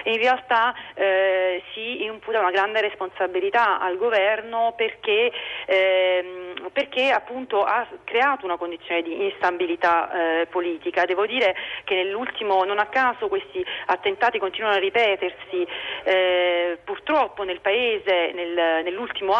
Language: Italian